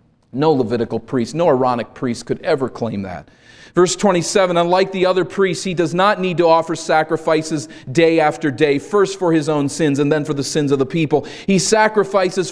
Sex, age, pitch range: male, 40-59, 115-150 Hz